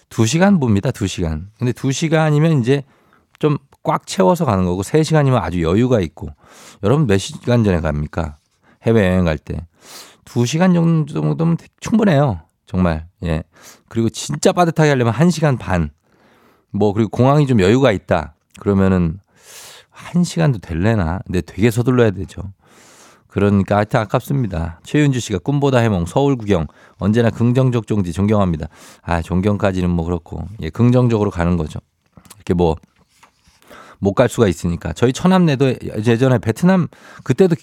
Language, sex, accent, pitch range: Korean, male, native, 90-135 Hz